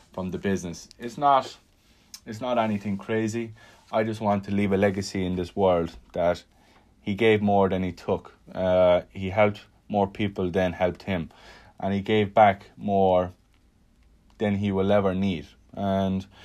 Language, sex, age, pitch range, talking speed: English, male, 20-39, 95-110 Hz, 165 wpm